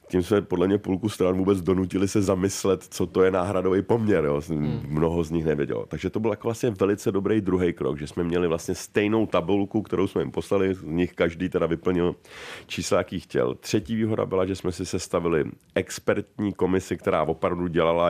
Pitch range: 80-100 Hz